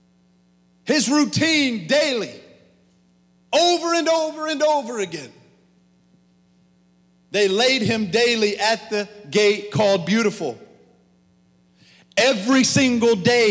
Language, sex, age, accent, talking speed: English, male, 40-59, American, 95 wpm